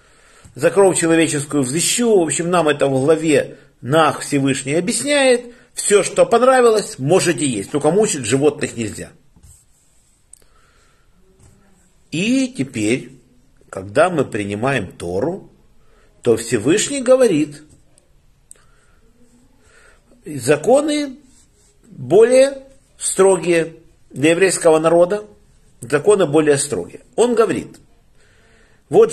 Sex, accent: male, native